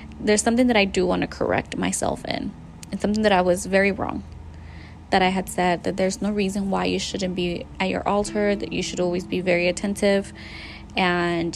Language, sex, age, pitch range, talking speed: English, female, 20-39, 180-210 Hz, 210 wpm